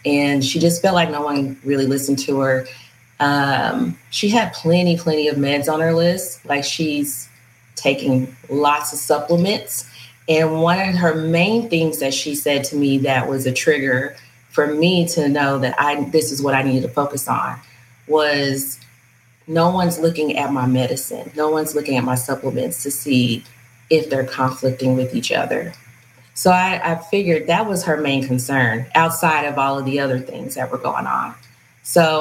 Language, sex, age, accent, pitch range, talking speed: English, female, 30-49, American, 130-150 Hz, 185 wpm